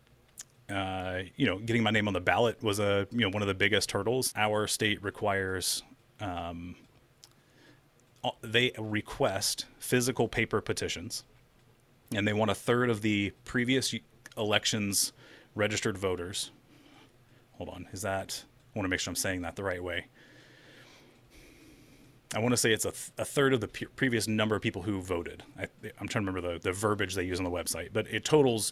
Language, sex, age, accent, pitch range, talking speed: English, male, 30-49, American, 95-120 Hz, 185 wpm